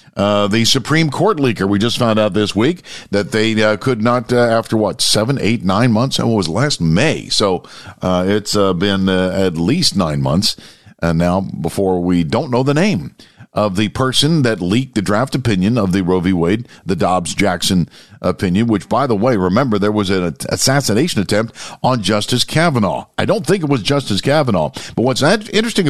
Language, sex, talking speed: English, male, 200 wpm